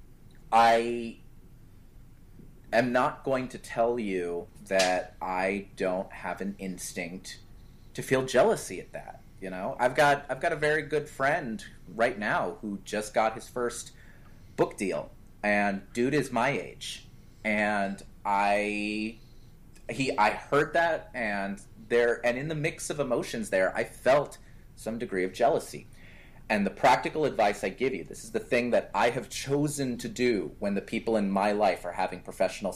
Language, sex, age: English, male, 30-49